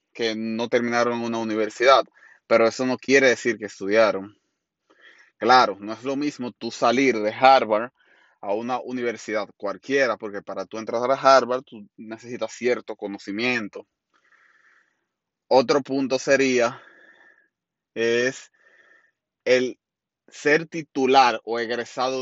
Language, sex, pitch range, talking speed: Spanish, male, 115-135 Hz, 120 wpm